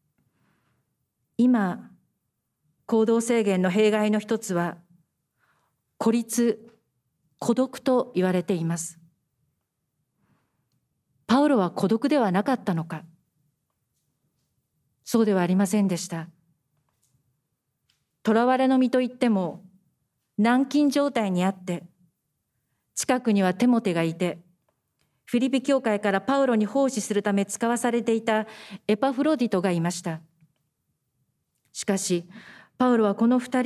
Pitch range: 175-235 Hz